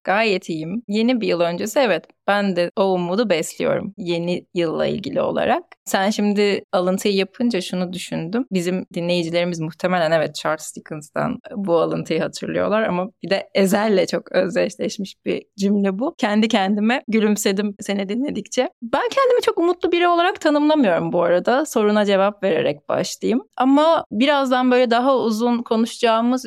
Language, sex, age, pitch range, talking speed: Turkish, female, 30-49, 195-255 Hz, 145 wpm